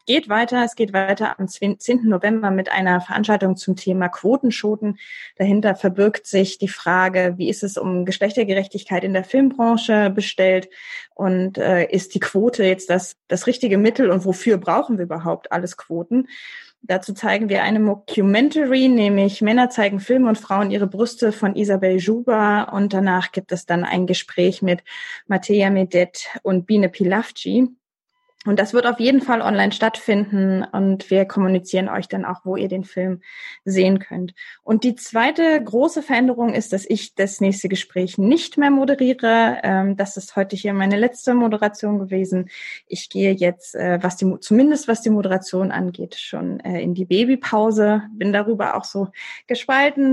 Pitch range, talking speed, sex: 190-230 Hz, 160 wpm, female